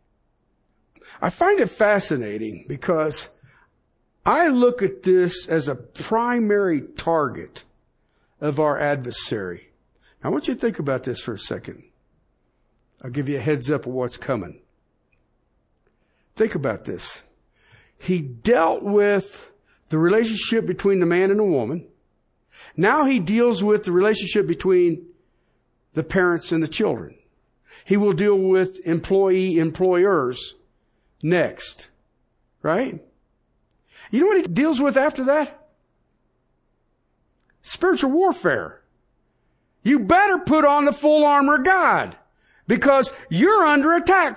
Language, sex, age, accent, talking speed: English, male, 60-79, American, 125 wpm